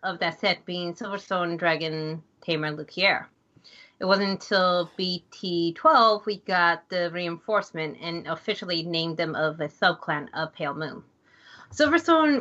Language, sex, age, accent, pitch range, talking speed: English, female, 30-49, American, 170-210 Hz, 130 wpm